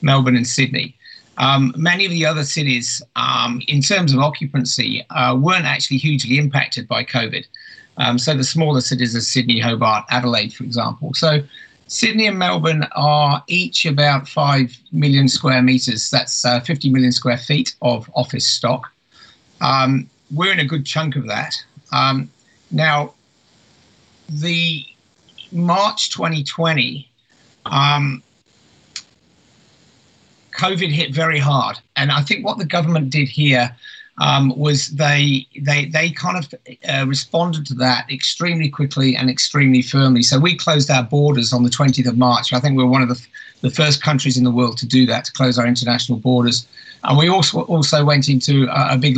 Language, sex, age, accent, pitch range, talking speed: English, male, 50-69, British, 125-150 Hz, 160 wpm